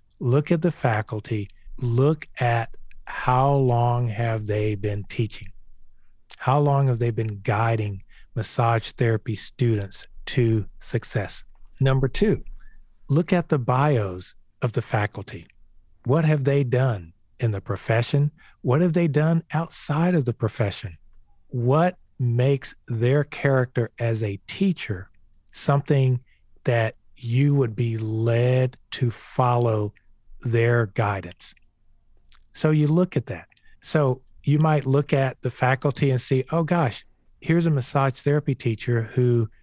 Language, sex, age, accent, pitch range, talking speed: English, male, 50-69, American, 110-140 Hz, 130 wpm